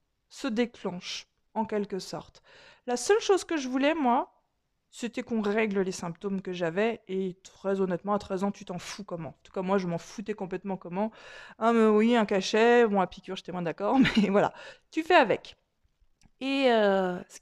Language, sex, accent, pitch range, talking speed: French, female, French, 195-260 Hz, 195 wpm